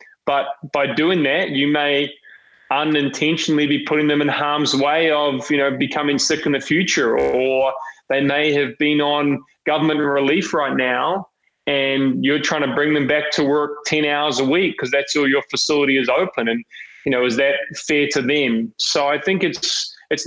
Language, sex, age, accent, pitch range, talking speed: English, male, 20-39, Australian, 140-155 Hz, 190 wpm